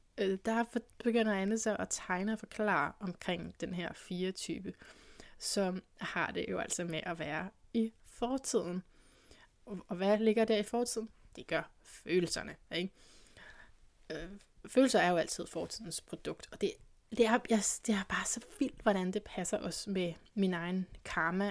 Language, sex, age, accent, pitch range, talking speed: Danish, female, 20-39, native, 180-220 Hz, 155 wpm